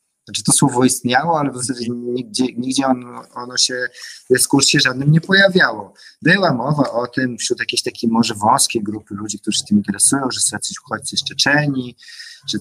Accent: native